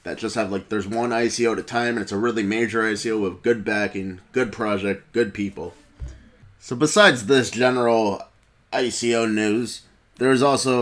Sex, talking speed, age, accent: male, 170 wpm, 20-39, American